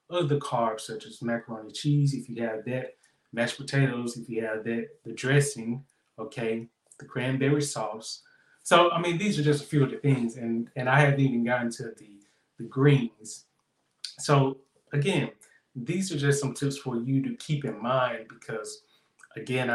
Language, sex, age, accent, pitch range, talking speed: English, male, 20-39, American, 120-150 Hz, 175 wpm